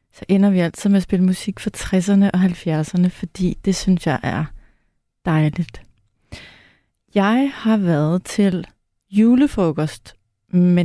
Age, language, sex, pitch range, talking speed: 30-49, Danish, female, 160-215 Hz, 135 wpm